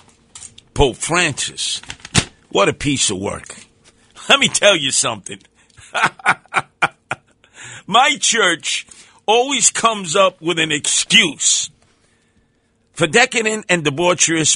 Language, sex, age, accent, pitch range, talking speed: English, male, 50-69, American, 120-180 Hz, 100 wpm